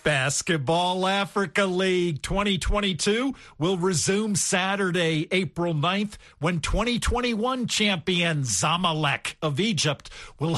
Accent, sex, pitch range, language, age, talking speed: American, male, 155-210 Hz, English, 50-69, 90 wpm